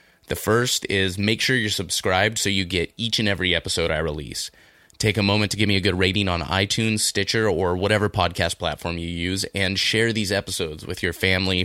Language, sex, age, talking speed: English, male, 20-39, 210 wpm